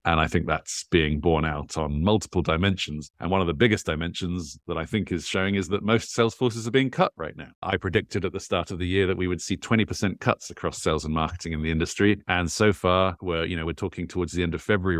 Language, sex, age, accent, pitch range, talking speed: English, male, 40-59, British, 85-95 Hz, 260 wpm